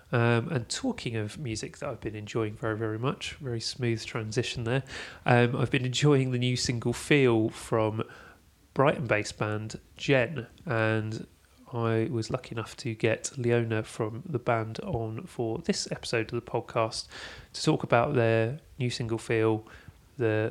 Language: English